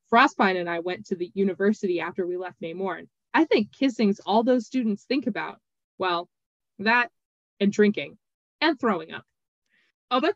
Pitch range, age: 185-240 Hz, 20-39